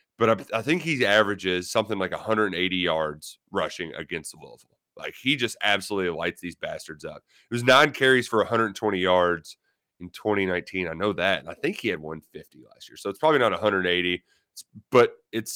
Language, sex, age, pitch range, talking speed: English, male, 30-49, 90-115 Hz, 190 wpm